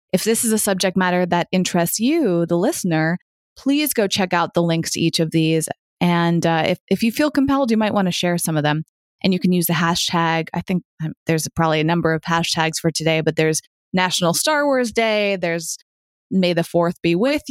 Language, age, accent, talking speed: English, 20-39, American, 220 wpm